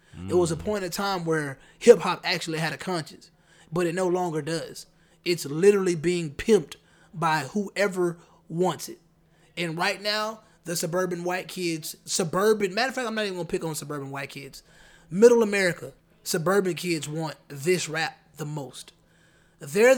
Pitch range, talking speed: 160-190 Hz, 170 wpm